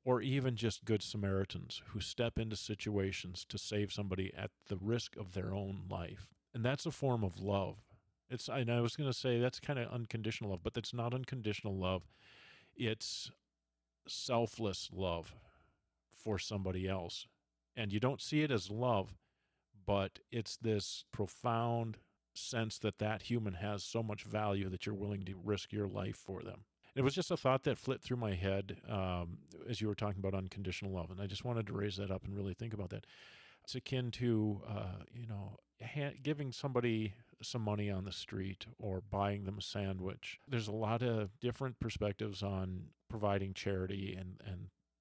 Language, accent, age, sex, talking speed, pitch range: English, American, 40-59, male, 180 wpm, 95-115 Hz